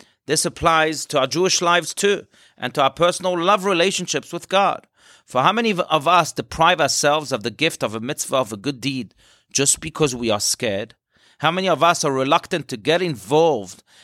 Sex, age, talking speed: male, 40-59, 195 wpm